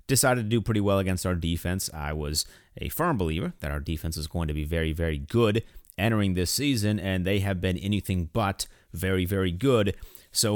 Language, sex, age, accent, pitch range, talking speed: English, male, 30-49, American, 85-115 Hz, 205 wpm